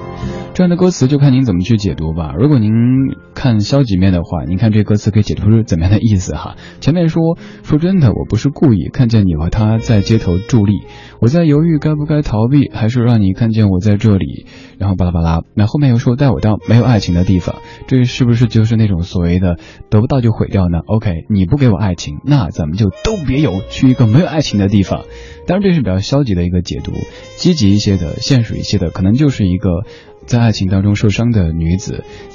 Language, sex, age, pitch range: Chinese, male, 20-39, 90-120 Hz